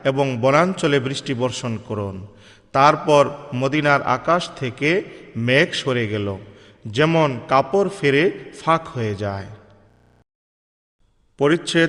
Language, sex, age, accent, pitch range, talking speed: Bengali, male, 40-59, native, 120-150 Hz, 90 wpm